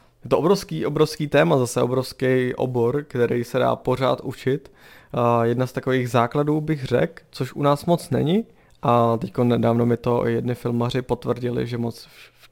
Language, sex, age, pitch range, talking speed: Czech, male, 20-39, 115-140 Hz, 175 wpm